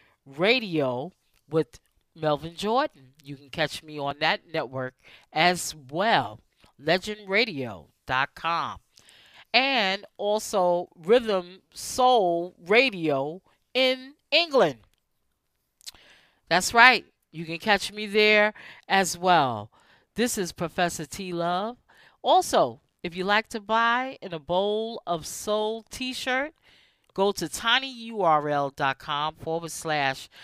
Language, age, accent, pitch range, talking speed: English, 40-59, American, 145-220 Hz, 105 wpm